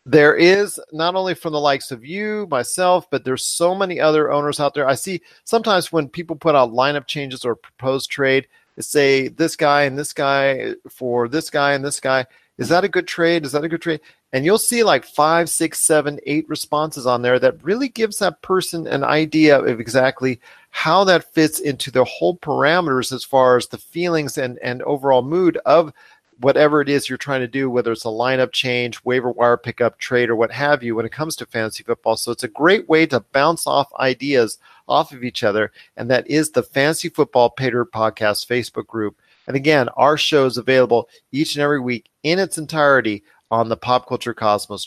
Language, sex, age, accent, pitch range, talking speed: English, male, 40-59, American, 125-160 Hz, 210 wpm